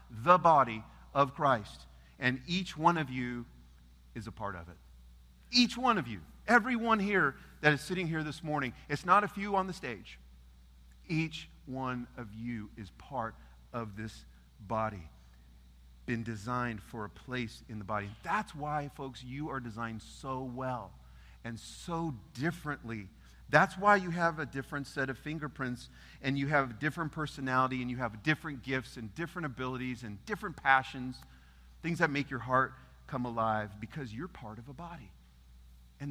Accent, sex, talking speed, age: American, male, 170 wpm, 40-59